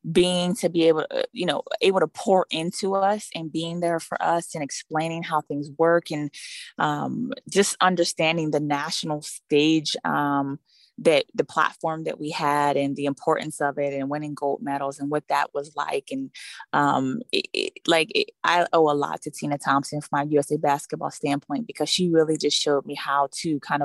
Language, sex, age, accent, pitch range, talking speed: English, female, 20-39, American, 145-165 Hz, 185 wpm